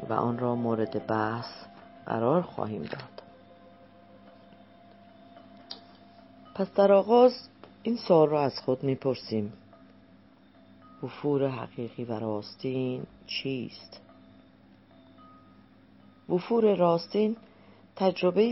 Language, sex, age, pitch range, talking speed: Persian, female, 40-59, 110-165 Hz, 80 wpm